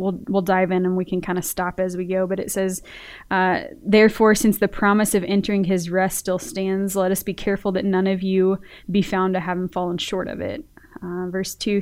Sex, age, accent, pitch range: female, 20-39, American, 180-200 Hz